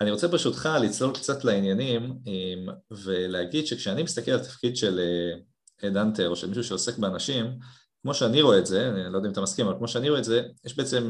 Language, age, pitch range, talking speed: Hebrew, 30-49, 95-120 Hz, 205 wpm